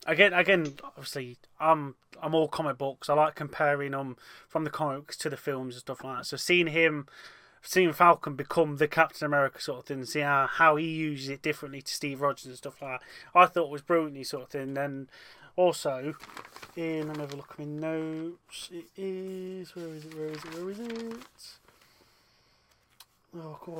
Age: 20-39